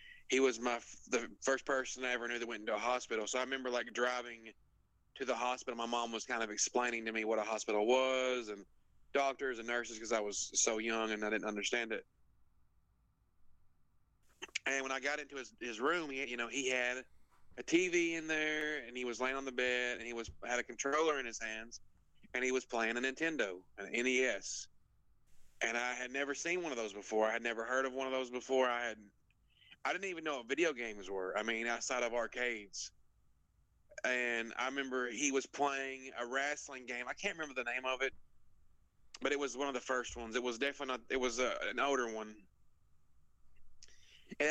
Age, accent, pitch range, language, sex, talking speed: 30-49, American, 115-135 Hz, English, male, 210 wpm